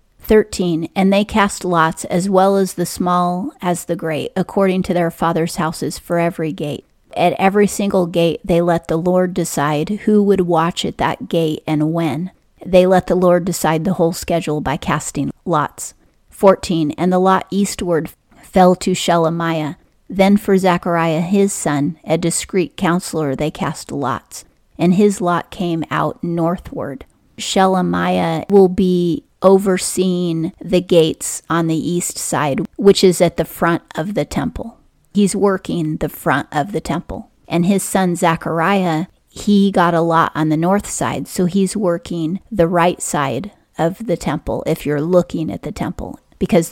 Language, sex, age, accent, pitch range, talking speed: English, female, 40-59, American, 165-190 Hz, 165 wpm